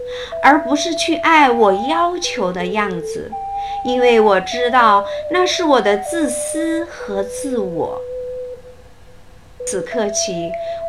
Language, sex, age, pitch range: Chinese, female, 50-69, 220-335 Hz